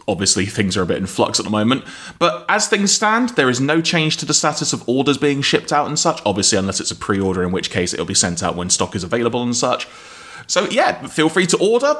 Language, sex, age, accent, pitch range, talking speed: English, male, 30-49, British, 110-165 Hz, 260 wpm